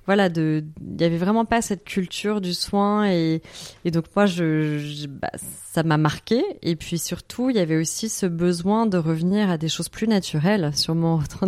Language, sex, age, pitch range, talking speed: French, female, 20-39, 175-220 Hz, 210 wpm